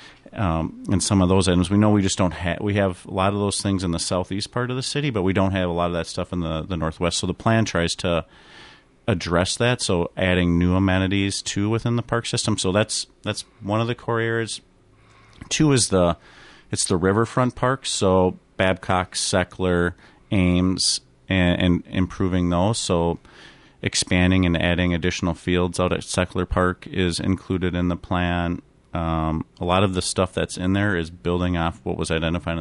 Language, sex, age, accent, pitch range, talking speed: English, male, 40-59, American, 85-95 Hz, 200 wpm